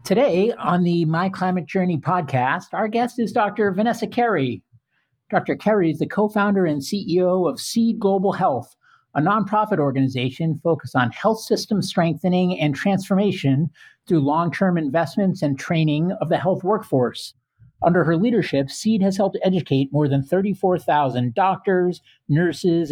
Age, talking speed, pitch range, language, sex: 50-69, 145 wpm, 150-195 Hz, English, male